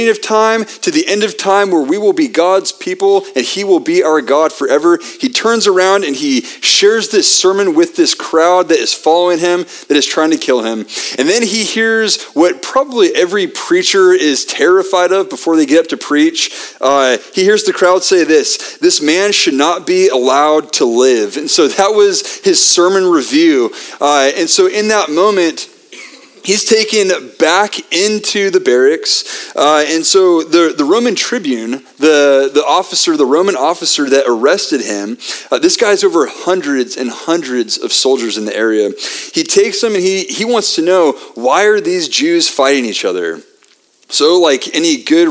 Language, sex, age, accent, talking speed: English, male, 30-49, American, 185 wpm